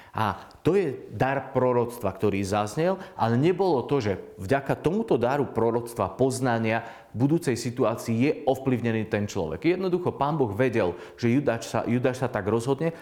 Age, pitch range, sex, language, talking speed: 40-59, 115-140 Hz, male, Slovak, 150 wpm